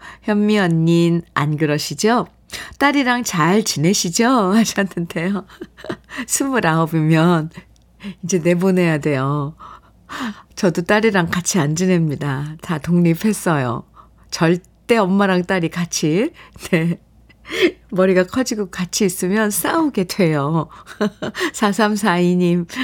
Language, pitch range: Korean, 170-215 Hz